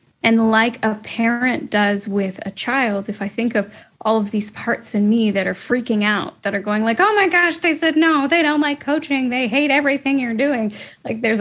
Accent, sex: American, female